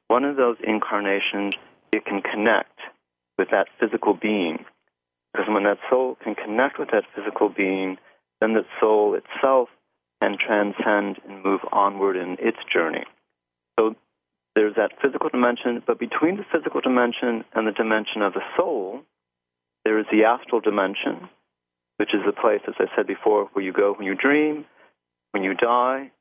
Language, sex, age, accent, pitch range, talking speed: English, male, 40-59, American, 90-115 Hz, 165 wpm